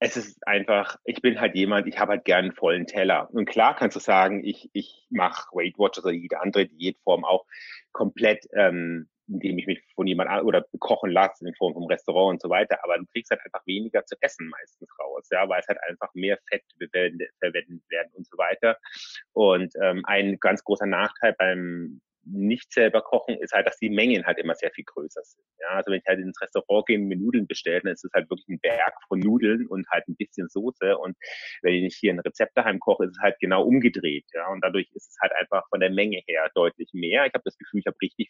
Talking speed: 235 wpm